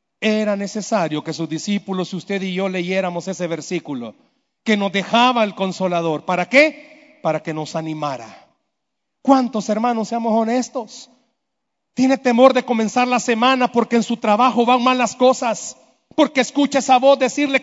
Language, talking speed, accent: Spanish, 155 wpm, Mexican